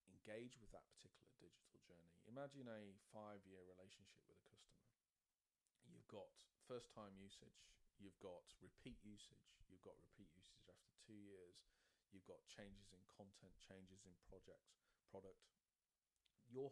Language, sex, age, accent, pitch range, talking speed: English, male, 40-59, British, 95-115 Hz, 145 wpm